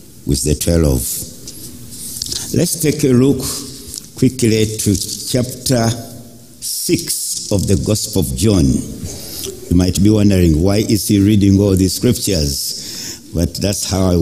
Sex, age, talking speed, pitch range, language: male, 60-79, 135 wpm, 90-130 Hz, English